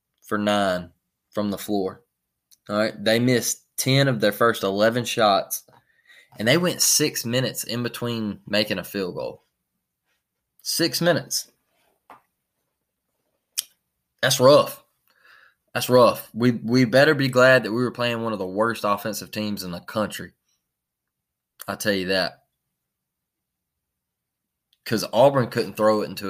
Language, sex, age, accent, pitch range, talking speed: English, male, 20-39, American, 100-125 Hz, 135 wpm